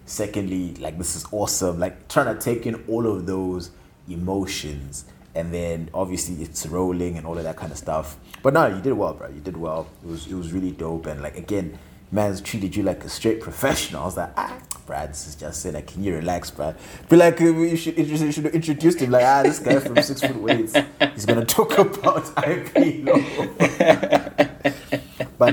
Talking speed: 215 wpm